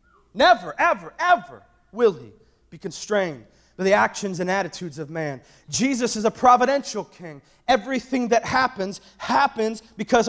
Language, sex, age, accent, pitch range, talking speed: English, male, 30-49, American, 185-275 Hz, 140 wpm